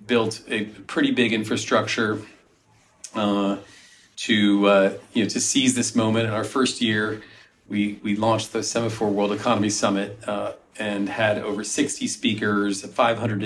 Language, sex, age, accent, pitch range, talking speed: English, male, 40-59, American, 105-125 Hz, 145 wpm